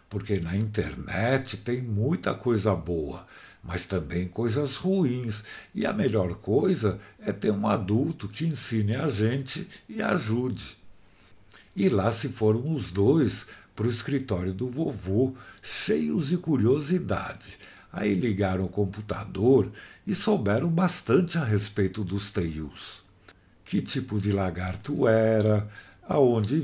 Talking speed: 125 wpm